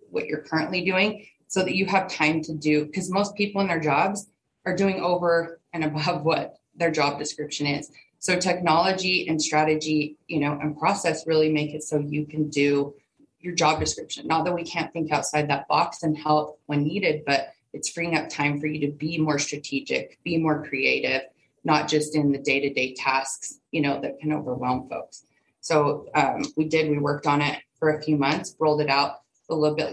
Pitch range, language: 145-165 Hz, English